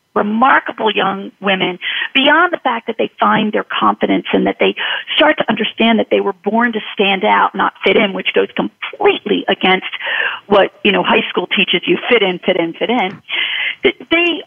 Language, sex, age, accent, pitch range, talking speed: English, female, 40-59, American, 210-295 Hz, 185 wpm